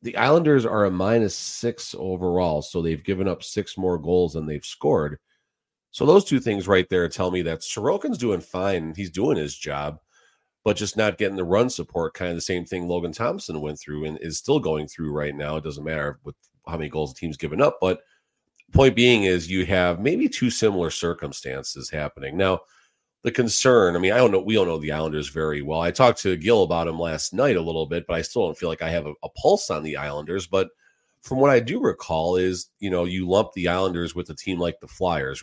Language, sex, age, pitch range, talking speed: English, male, 40-59, 80-95 Hz, 230 wpm